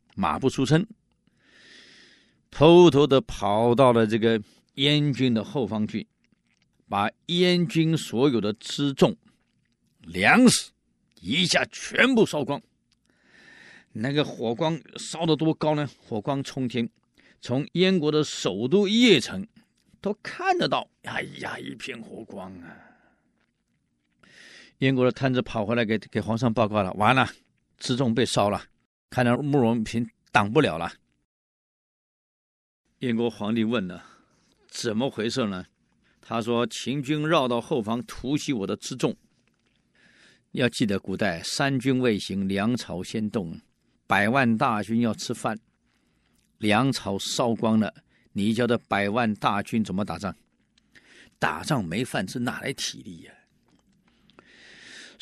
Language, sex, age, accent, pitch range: Chinese, male, 50-69, native, 110-150 Hz